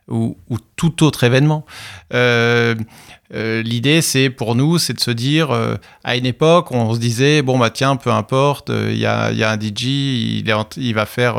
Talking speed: 210 wpm